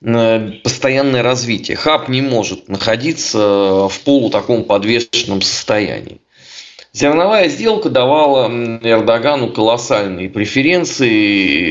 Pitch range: 115-160 Hz